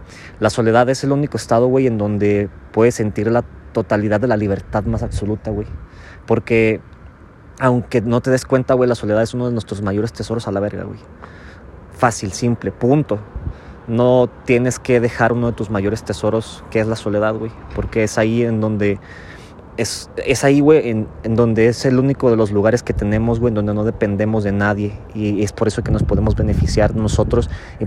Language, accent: Spanish, Mexican